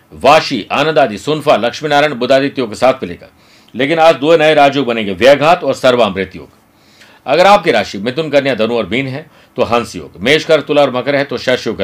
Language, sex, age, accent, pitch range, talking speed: Hindi, male, 50-69, native, 125-155 Hz, 155 wpm